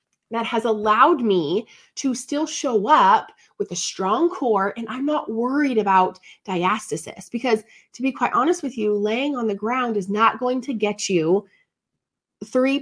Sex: female